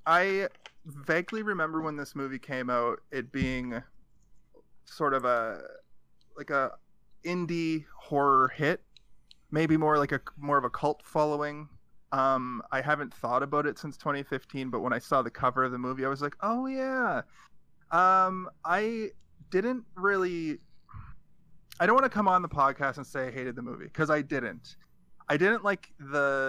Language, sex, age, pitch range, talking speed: English, male, 30-49, 135-180 Hz, 170 wpm